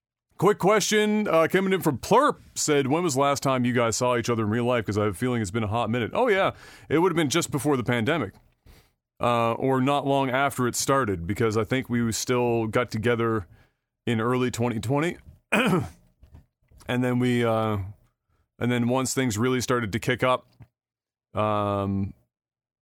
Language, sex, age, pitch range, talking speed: English, male, 30-49, 110-135 Hz, 190 wpm